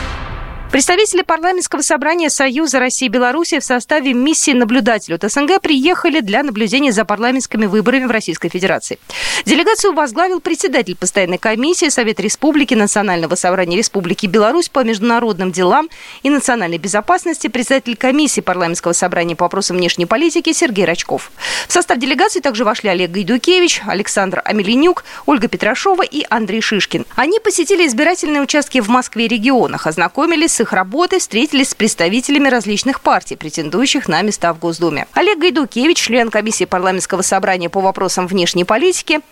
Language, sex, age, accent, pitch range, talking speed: Russian, female, 20-39, native, 190-305 Hz, 145 wpm